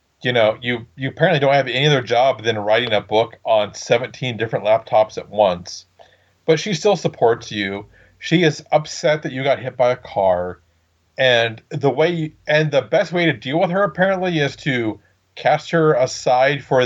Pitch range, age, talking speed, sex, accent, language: 105-150 Hz, 40-59, 180 wpm, male, American, English